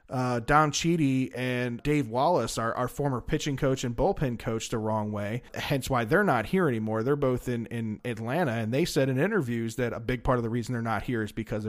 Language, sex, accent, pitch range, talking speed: English, male, American, 120-150 Hz, 230 wpm